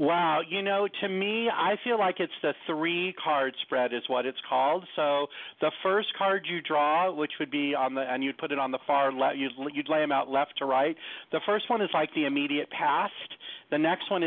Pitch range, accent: 140-175 Hz, American